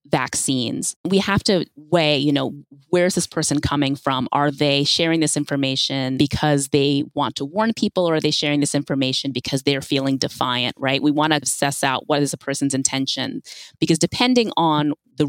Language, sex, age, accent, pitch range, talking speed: English, female, 20-39, American, 140-170 Hz, 190 wpm